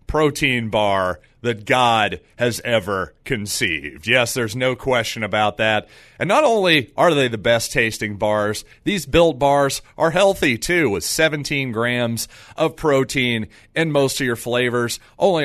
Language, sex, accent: English, male, American